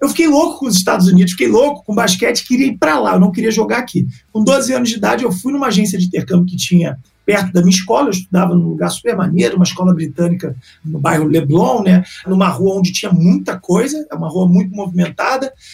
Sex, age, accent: male, 40-59, Brazilian